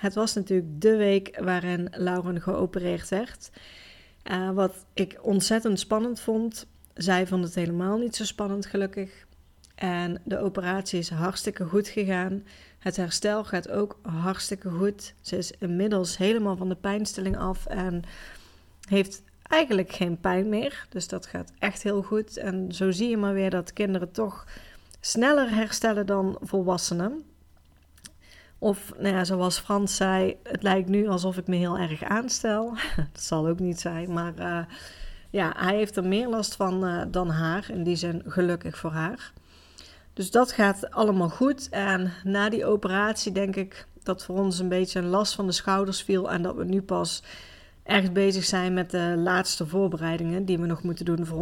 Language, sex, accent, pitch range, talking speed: Dutch, female, Dutch, 175-205 Hz, 170 wpm